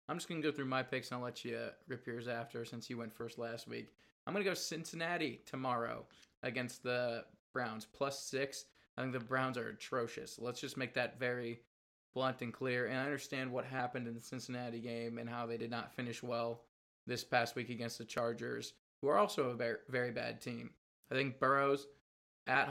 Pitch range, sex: 120-130 Hz, male